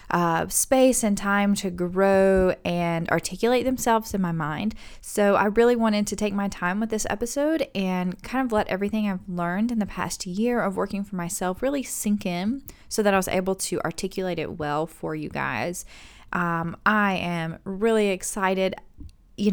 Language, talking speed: English, 180 wpm